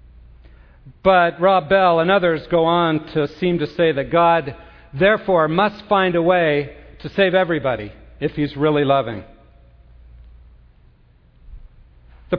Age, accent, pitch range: 50-69, American, 130-175 Hz